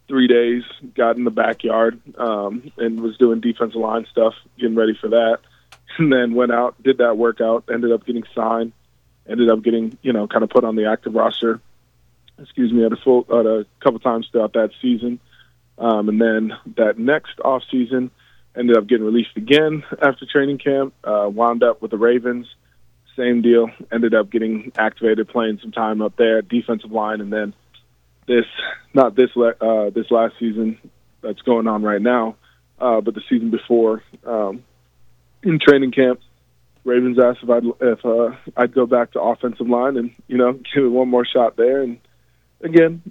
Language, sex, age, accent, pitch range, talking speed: English, male, 20-39, American, 115-130 Hz, 185 wpm